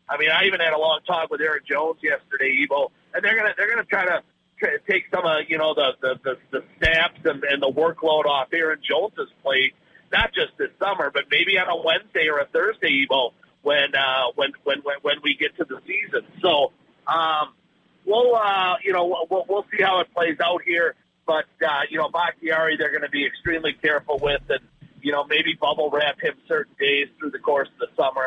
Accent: American